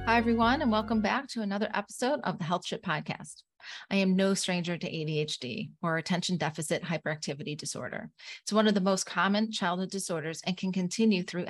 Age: 30-49